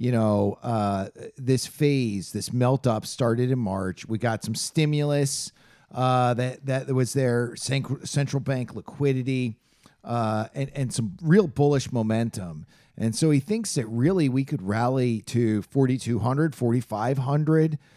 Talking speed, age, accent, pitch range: 135 wpm, 40-59, American, 120-160 Hz